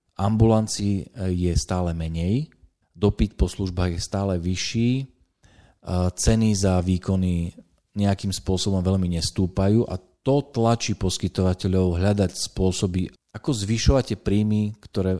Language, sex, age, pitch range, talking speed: Slovak, male, 40-59, 90-110 Hz, 110 wpm